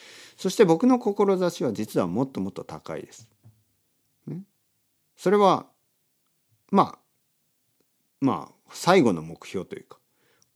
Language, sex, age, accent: Japanese, male, 50-69, native